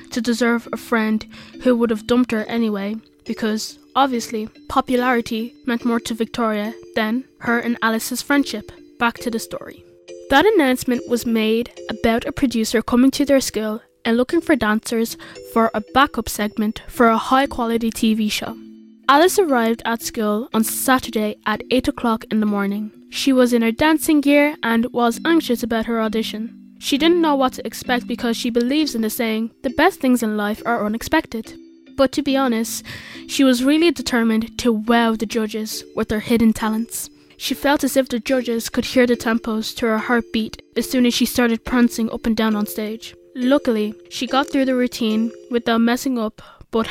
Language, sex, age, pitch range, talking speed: English, female, 10-29, 225-260 Hz, 185 wpm